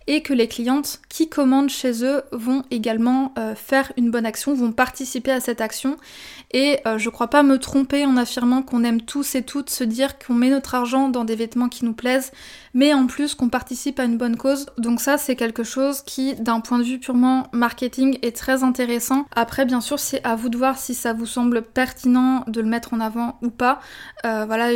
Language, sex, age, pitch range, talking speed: French, female, 20-39, 235-265 Hz, 225 wpm